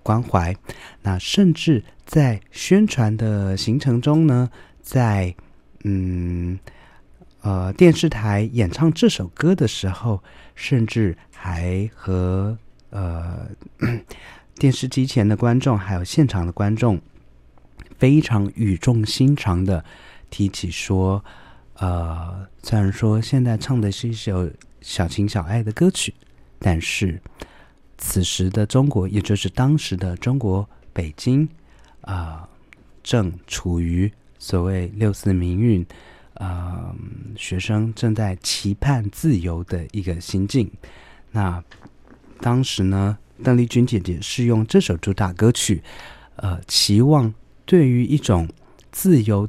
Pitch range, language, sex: 95-120 Hz, Chinese, male